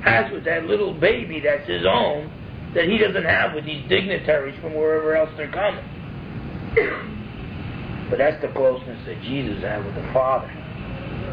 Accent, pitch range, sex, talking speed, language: American, 120-180 Hz, male, 160 wpm, English